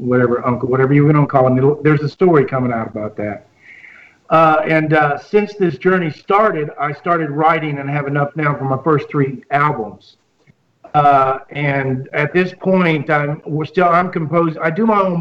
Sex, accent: male, American